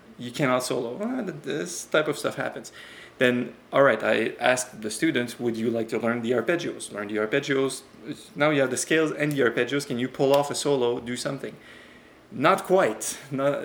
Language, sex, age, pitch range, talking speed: English, male, 30-49, 120-145 Hz, 195 wpm